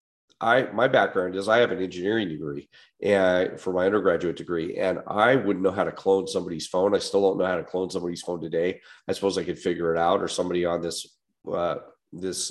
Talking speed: 220 wpm